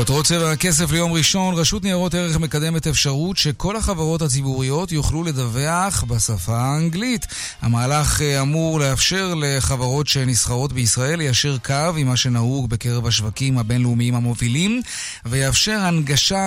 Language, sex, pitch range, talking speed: Hebrew, male, 130-175 Hz, 125 wpm